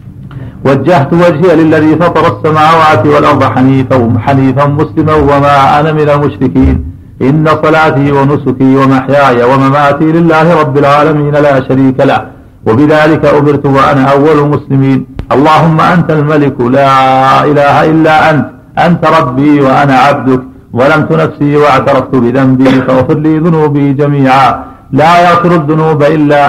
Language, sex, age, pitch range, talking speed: Arabic, male, 50-69, 135-155 Hz, 115 wpm